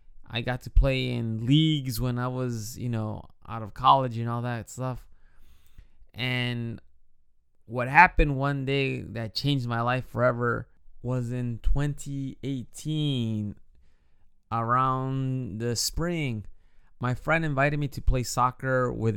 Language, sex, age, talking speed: English, male, 20-39, 130 wpm